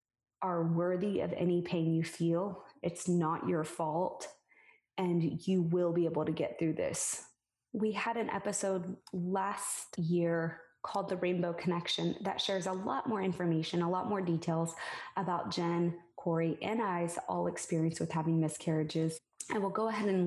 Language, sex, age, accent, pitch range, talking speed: English, female, 20-39, American, 170-195 Hz, 165 wpm